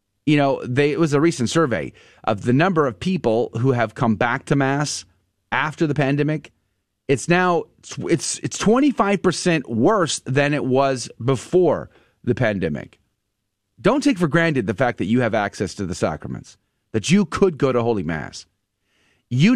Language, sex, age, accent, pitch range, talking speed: English, male, 30-49, American, 115-165 Hz, 165 wpm